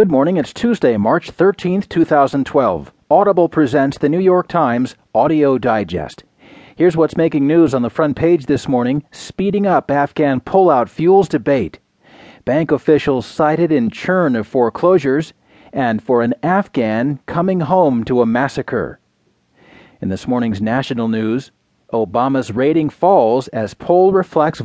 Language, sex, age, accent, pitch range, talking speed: English, male, 40-59, American, 125-170 Hz, 140 wpm